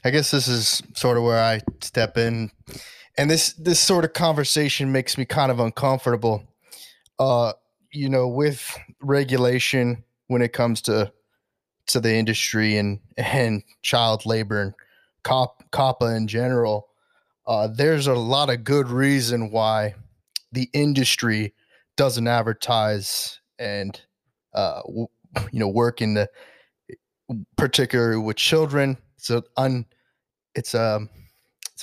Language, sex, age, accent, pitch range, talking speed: English, male, 20-39, American, 110-135 Hz, 135 wpm